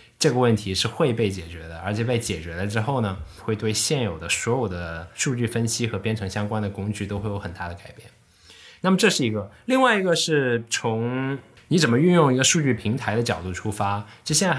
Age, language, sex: 20-39, Chinese, male